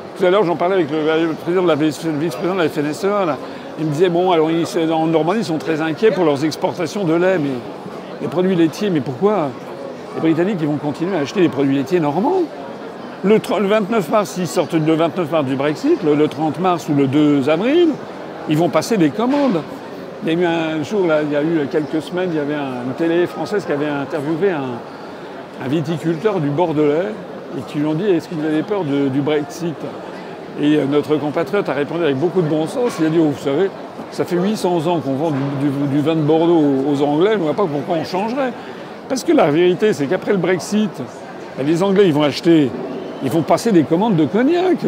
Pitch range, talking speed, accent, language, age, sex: 150-190 Hz, 220 wpm, French, French, 50-69, male